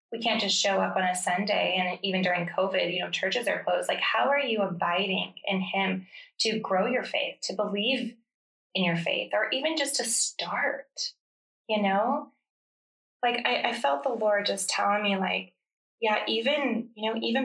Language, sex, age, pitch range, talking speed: English, female, 20-39, 190-230 Hz, 190 wpm